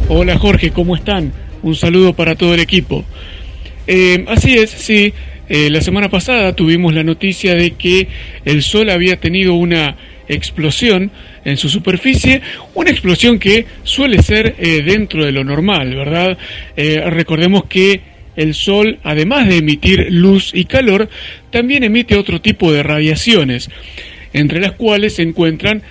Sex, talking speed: male, 150 wpm